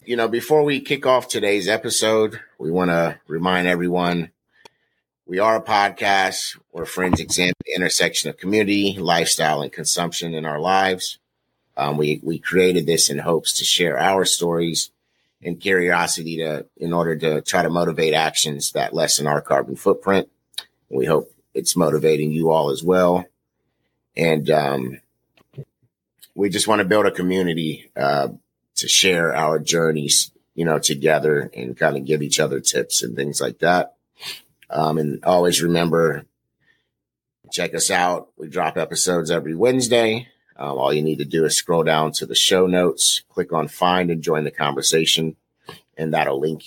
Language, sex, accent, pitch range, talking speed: English, male, American, 80-95 Hz, 165 wpm